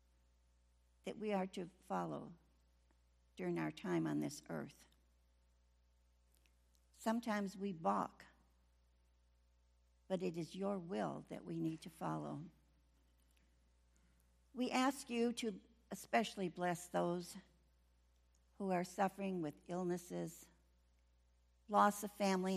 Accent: American